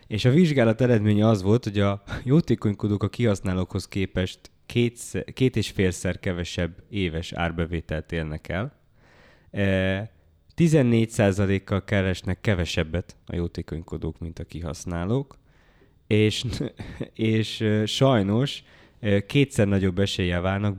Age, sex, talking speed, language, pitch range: 20-39, male, 105 wpm, Hungarian, 90-115 Hz